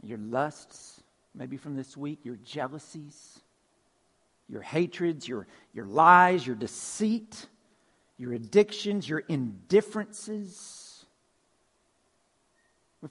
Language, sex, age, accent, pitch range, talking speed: English, male, 50-69, American, 185-235 Hz, 90 wpm